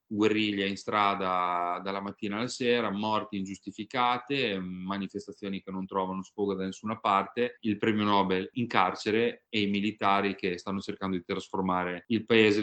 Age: 30-49